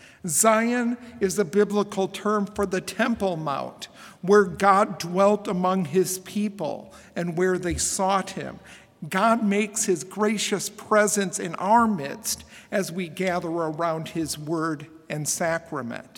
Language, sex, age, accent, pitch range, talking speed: English, male, 50-69, American, 180-210 Hz, 135 wpm